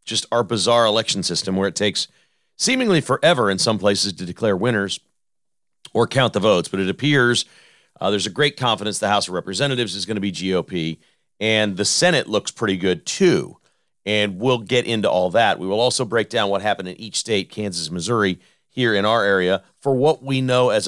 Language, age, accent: English, 40-59, American